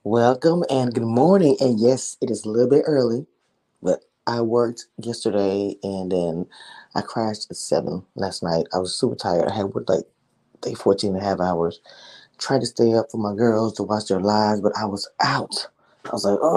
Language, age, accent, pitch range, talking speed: English, 20-39, American, 105-140 Hz, 200 wpm